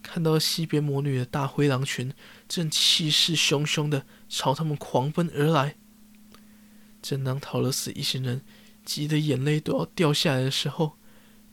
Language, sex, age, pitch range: Chinese, male, 20-39, 130-205 Hz